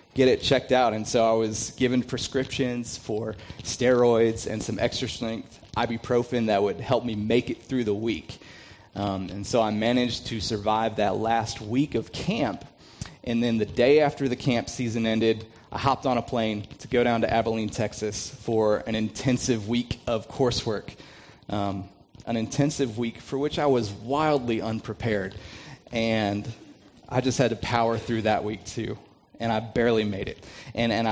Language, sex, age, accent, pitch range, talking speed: English, male, 30-49, American, 105-125 Hz, 175 wpm